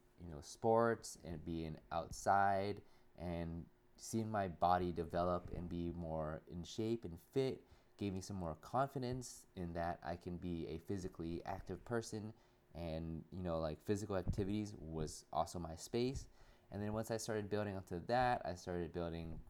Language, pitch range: English, 85-110 Hz